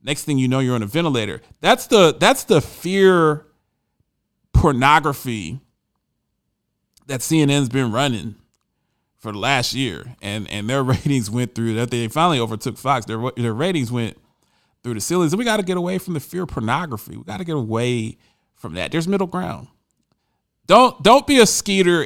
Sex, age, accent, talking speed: male, 40-59, American, 175 wpm